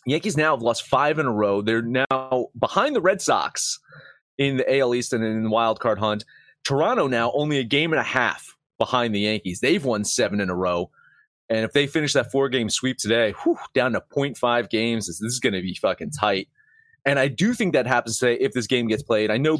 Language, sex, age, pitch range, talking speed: English, male, 30-49, 115-155 Hz, 225 wpm